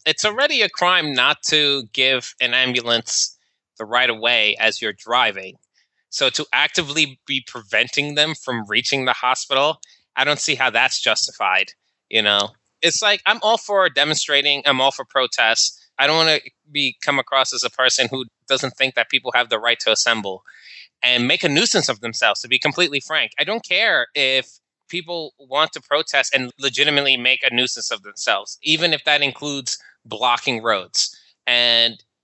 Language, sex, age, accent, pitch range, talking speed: English, male, 20-39, American, 125-155 Hz, 180 wpm